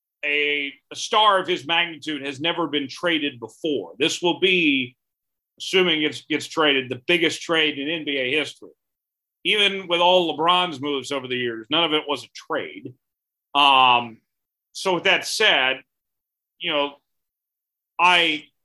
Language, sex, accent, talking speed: English, male, American, 150 wpm